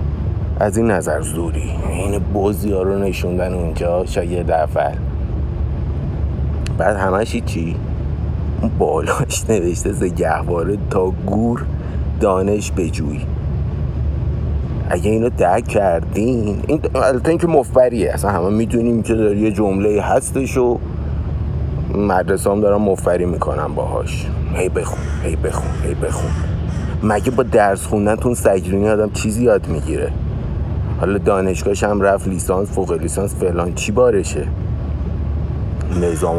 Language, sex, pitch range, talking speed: Persian, male, 80-105 Hz, 115 wpm